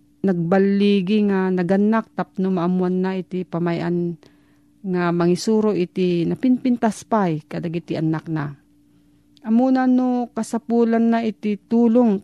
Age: 40-59